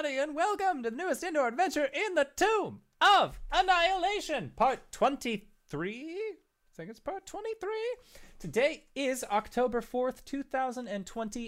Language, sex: English, male